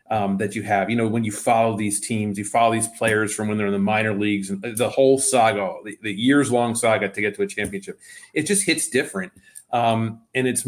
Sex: male